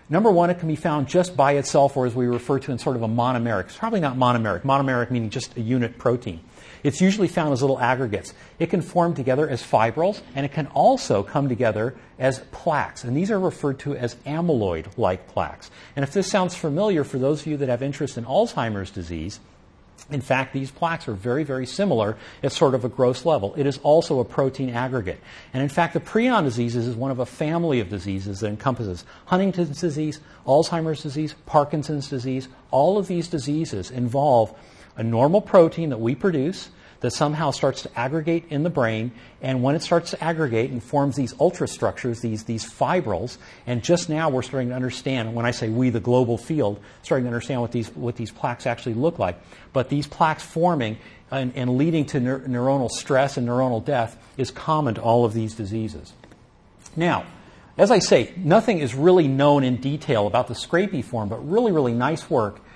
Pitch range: 120-155 Hz